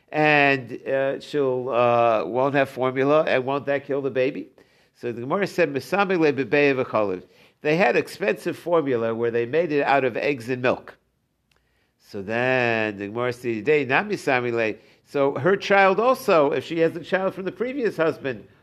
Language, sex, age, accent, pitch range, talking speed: English, male, 60-79, American, 125-160 Hz, 160 wpm